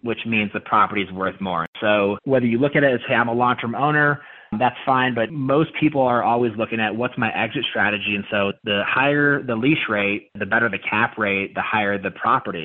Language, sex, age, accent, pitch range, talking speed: English, male, 30-49, American, 100-120 Hz, 230 wpm